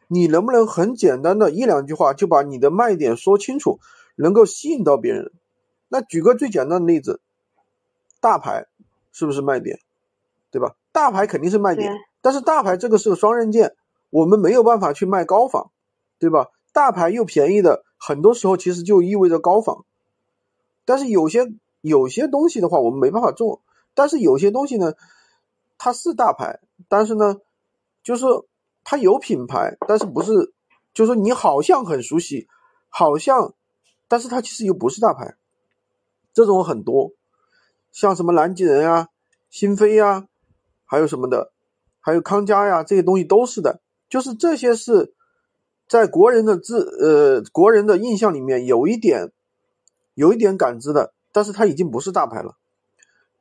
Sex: male